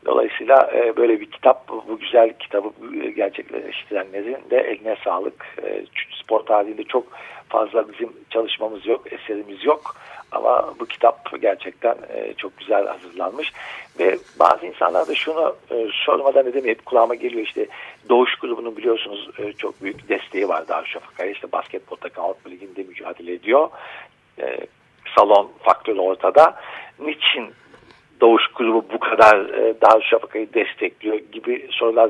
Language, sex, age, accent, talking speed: Turkish, male, 50-69, native, 125 wpm